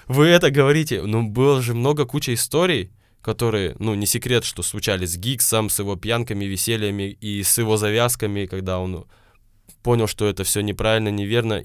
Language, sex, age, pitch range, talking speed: Russian, male, 20-39, 105-130 Hz, 170 wpm